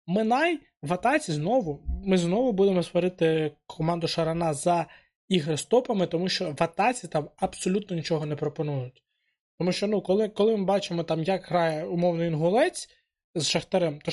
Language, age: Ukrainian, 20-39